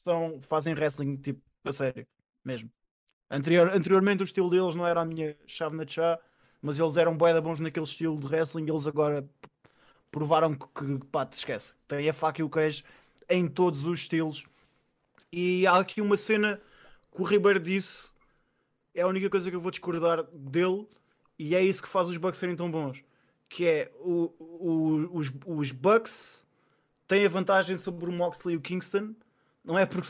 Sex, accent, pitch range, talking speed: male, Portuguese, 155-185 Hz, 185 wpm